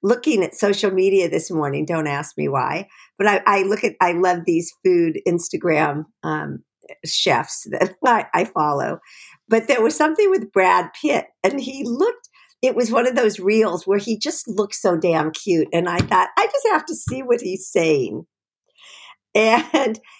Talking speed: 180 wpm